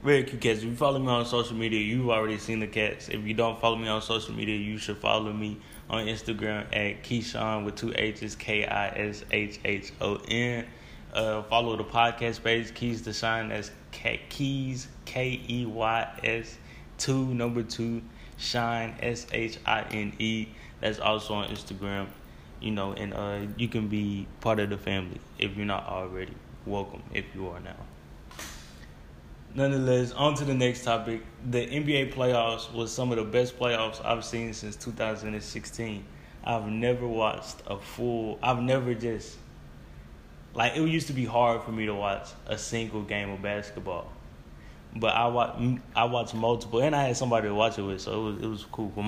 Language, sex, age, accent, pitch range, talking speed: English, male, 10-29, American, 105-120 Hz, 185 wpm